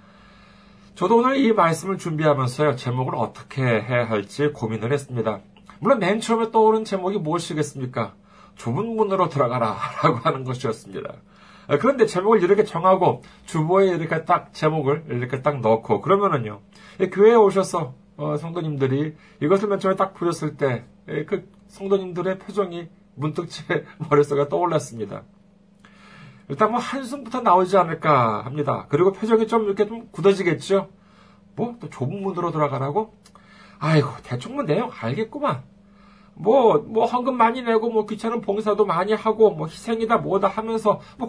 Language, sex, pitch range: Korean, male, 140-210 Hz